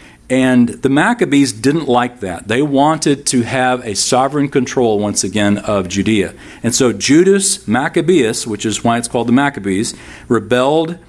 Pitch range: 110-135 Hz